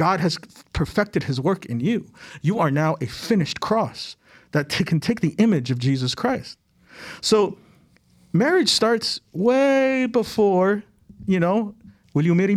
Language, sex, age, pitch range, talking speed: English, male, 50-69, 130-185 Hz, 150 wpm